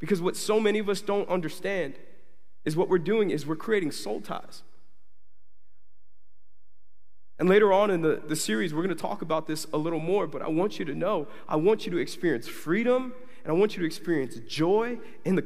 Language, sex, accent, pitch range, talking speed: English, male, American, 115-180 Hz, 205 wpm